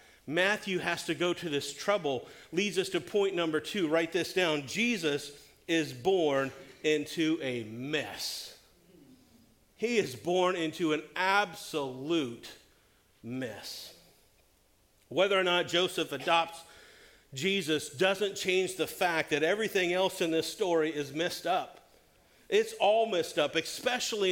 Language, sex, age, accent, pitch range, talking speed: English, male, 50-69, American, 155-190 Hz, 130 wpm